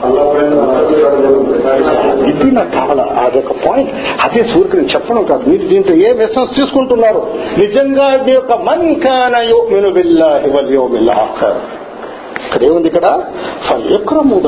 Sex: male